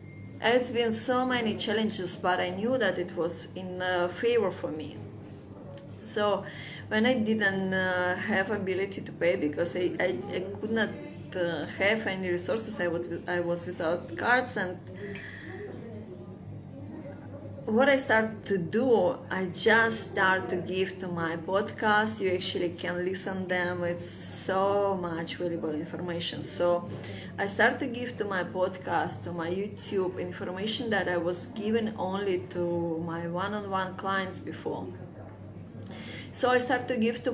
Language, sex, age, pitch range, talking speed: English, female, 20-39, 175-215 Hz, 150 wpm